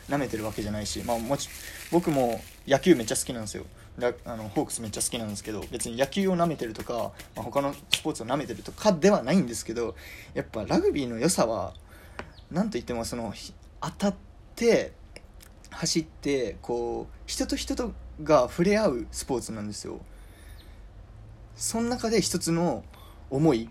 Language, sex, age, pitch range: Japanese, male, 20-39, 110-165 Hz